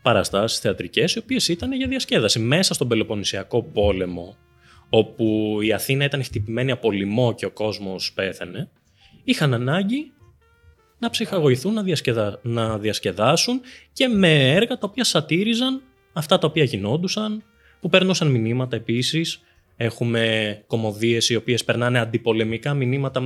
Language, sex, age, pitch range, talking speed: Greek, male, 20-39, 100-165 Hz, 130 wpm